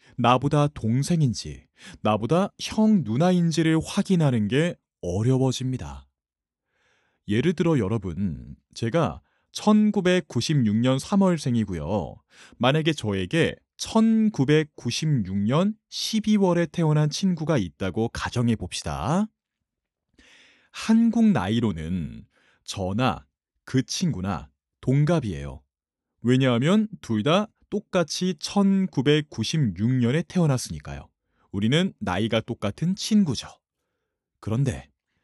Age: 30-49